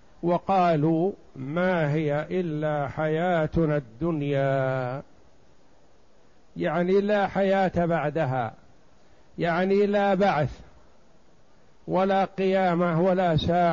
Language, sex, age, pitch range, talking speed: Arabic, male, 50-69, 145-185 Hz, 75 wpm